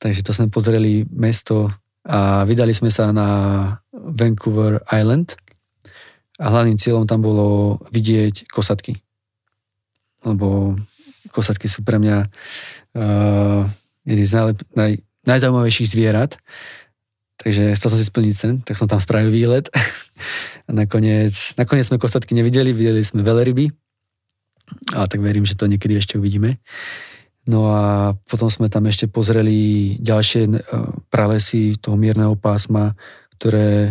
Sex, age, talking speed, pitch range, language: male, 20-39, 130 wpm, 105-115 Hz, Slovak